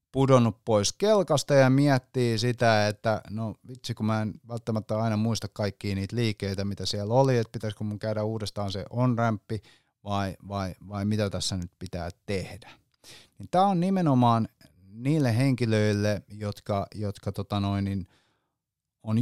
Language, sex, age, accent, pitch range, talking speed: Finnish, male, 30-49, native, 105-135 Hz, 145 wpm